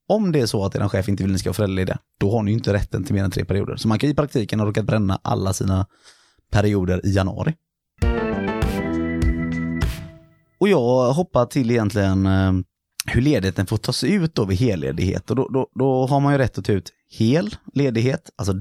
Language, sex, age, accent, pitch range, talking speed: Swedish, male, 30-49, native, 95-125 Hz, 210 wpm